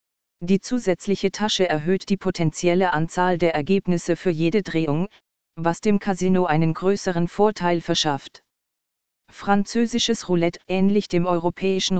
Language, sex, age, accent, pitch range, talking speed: German, female, 40-59, German, 165-195 Hz, 120 wpm